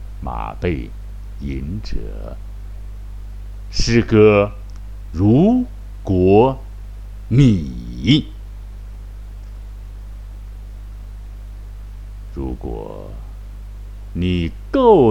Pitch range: 100-105 Hz